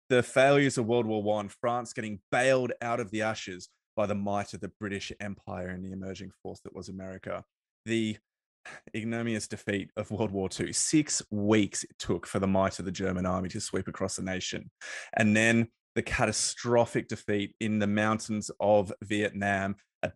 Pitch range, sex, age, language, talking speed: 100-125 Hz, male, 20-39, English, 180 wpm